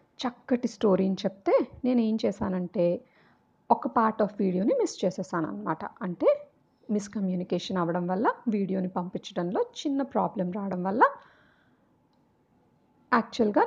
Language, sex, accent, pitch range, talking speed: Telugu, female, native, 190-275 Hz, 100 wpm